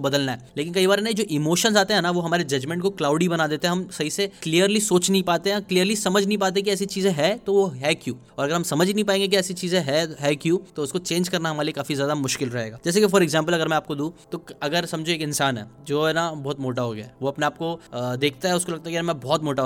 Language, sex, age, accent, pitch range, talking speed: Hindi, male, 10-29, native, 145-185 Hz, 145 wpm